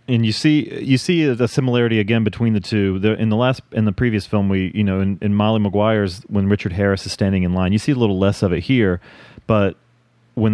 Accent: American